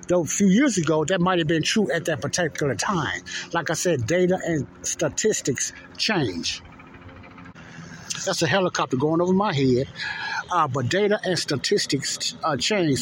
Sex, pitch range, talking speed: male, 125-180 Hz, 165 wpm